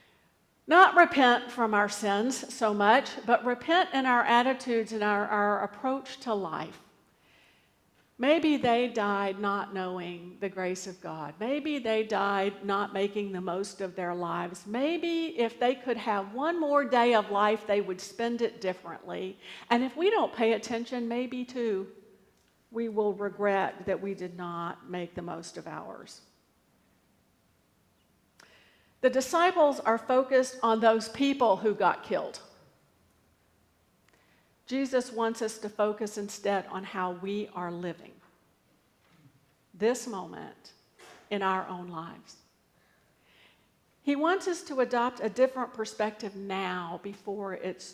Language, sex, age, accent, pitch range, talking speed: English, female, 50-69, American, 190-240 Hz, 140 wpm